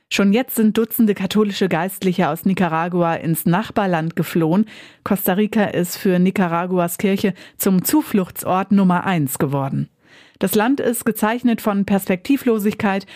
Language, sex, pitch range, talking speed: German, female, 175-215 Hz, 130 wpm